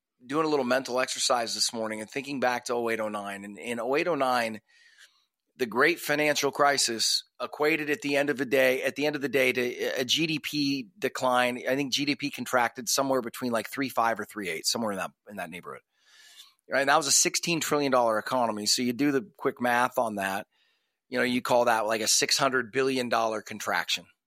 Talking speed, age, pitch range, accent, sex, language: 220 wpm, 30-49, 120-150 Hz, American, male, English